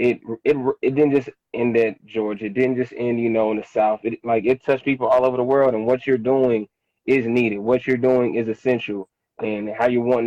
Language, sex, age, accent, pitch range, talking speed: English, male, 20-39, American, 115-135 Hz, 240 wpm